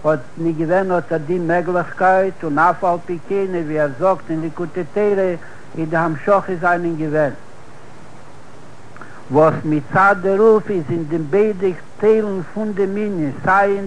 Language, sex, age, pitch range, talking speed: Hebrew, male, 60-79, 155-190 Hz, 150 wpm